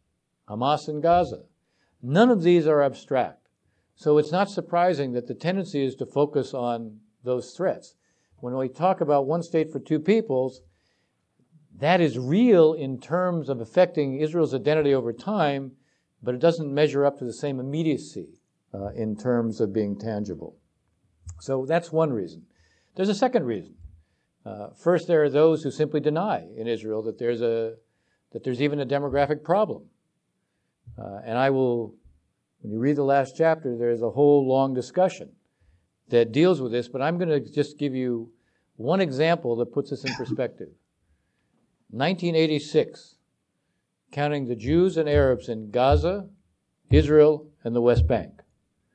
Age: 50-69